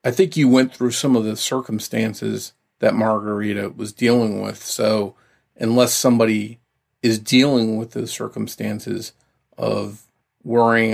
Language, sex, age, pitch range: English, male, 40-59, 110-125 Hz